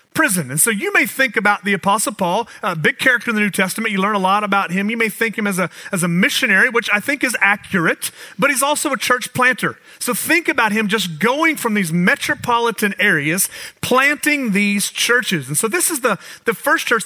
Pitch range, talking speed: 180-250 Hz, 230 wpm